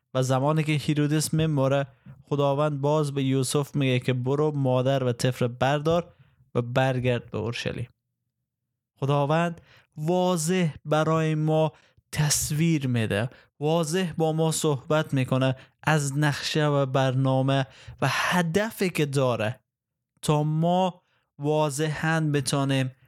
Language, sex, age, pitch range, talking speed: Persian, male, 20-39, 130-160 Hz, 110 wpm